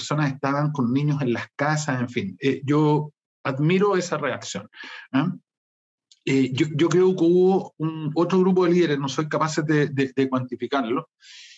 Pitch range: 130-160 Hz